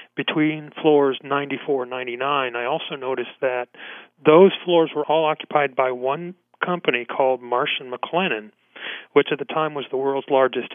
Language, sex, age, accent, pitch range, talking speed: English, male, 40-59, American, 130-160 Hz, 155 wpm